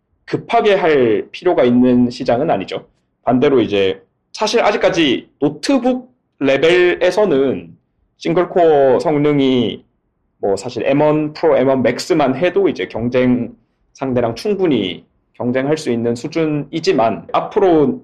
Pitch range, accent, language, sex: 125-190 Hz, Korean, English, male